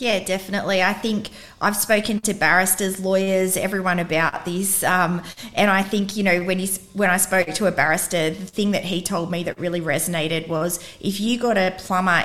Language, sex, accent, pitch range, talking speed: English, female, Australian, 160-190 Hz, 195 wpm